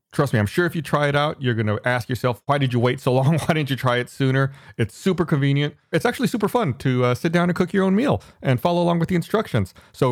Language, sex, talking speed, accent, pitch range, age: English, male, 290 wpm, American, 105-145 Hz, 30-49